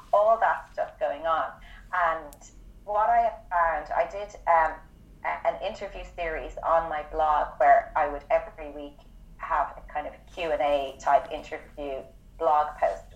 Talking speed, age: 155 wpm, 30-49